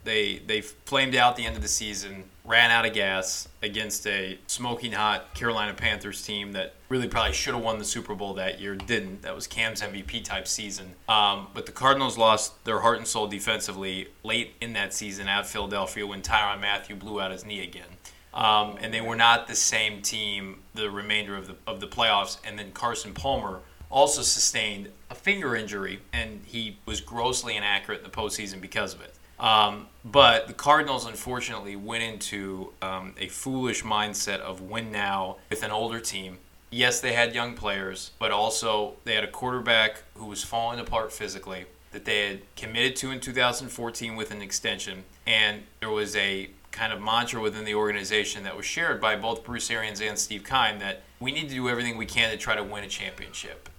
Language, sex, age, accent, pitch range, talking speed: English, male, 20-39, American, 100-115 Hz, 195 wpm